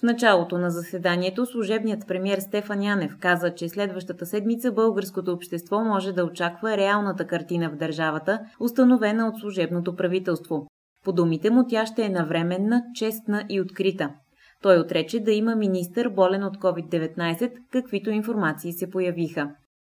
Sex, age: female, 20-39